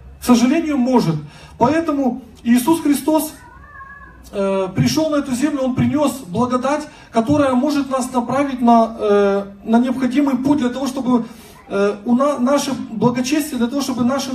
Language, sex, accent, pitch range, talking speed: Russian, male, native, 210-275 Hz, 140 wpm